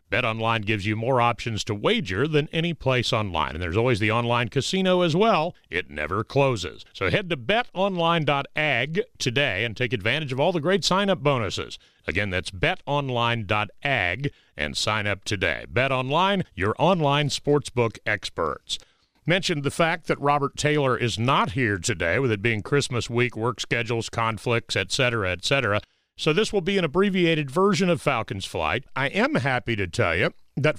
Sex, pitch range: male, 105-145 Hz